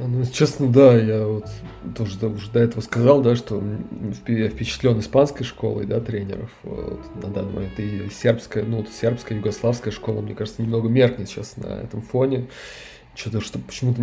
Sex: male